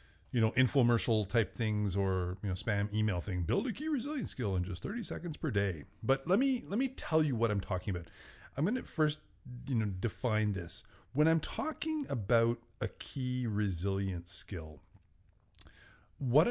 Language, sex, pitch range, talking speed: English, male, 95-130 Hz, 180 wpm